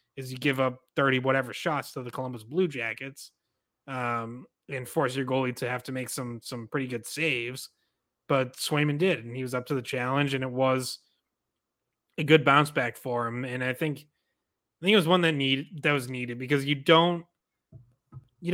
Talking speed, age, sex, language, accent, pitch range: 200 wpm, 20-39, male, English, American, 125-150 Hz